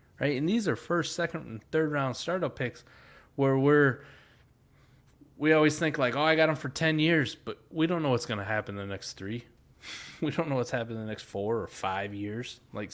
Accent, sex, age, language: American, male, 20-39, English